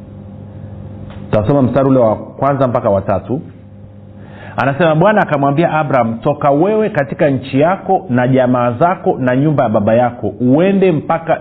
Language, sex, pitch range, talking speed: Swahili, male, 110-155 Hz, 135 wpm